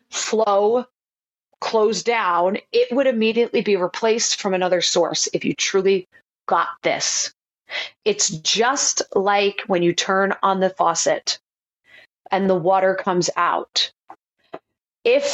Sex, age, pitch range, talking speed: female, 30-49, 200-270 Hz, 120 wpm